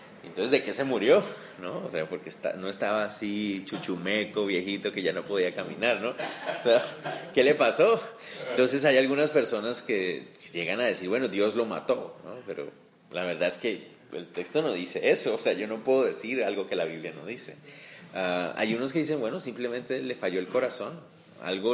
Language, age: Spanish, 30-49